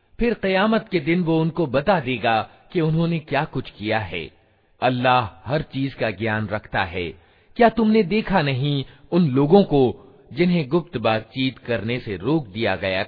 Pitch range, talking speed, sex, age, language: 110-175 Hz, 165 wpm, male, 50-69, Hindi